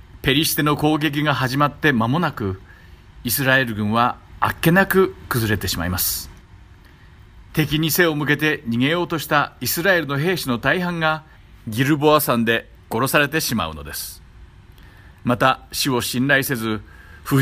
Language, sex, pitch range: Japanese, male, 95-145 Hz